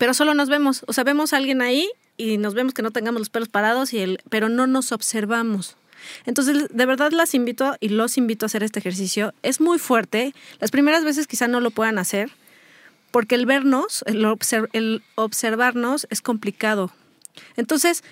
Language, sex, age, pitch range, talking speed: Spanish, female, 30-49, 220-275 Hz, 190 wpm